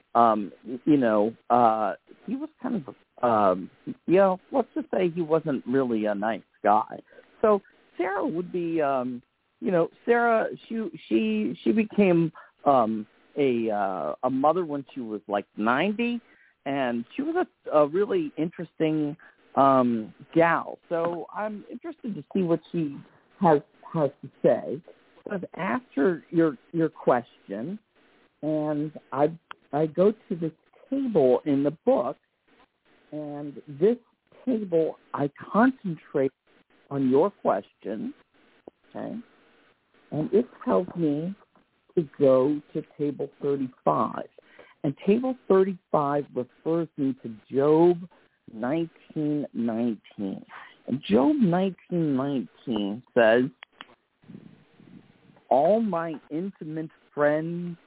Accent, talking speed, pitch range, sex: American, 115 wpm, 135-195 Hz, male